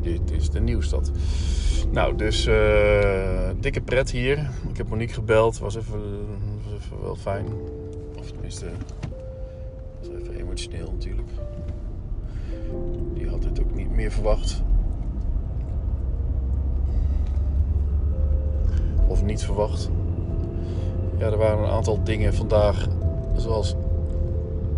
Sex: male